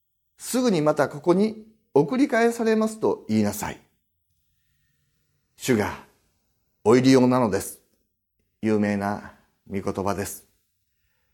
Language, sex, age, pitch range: Japanese, male, 40-59, 95-155 Hz